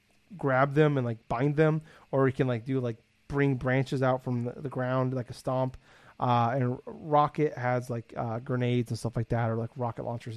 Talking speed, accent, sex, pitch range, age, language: 215 wpm, American, male, 120-150 Hz, 30-49, English